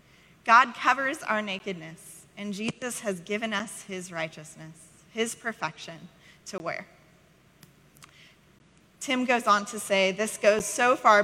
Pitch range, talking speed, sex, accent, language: 180-240 Hz, 130 wpm, female, American, English